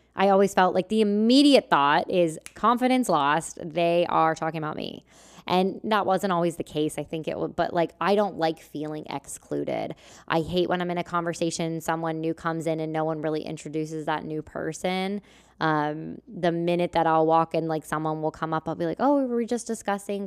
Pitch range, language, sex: 155-180 Hz, English, female